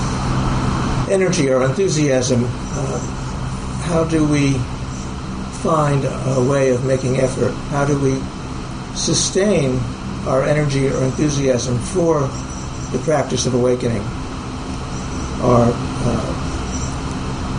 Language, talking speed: English, 95 wpm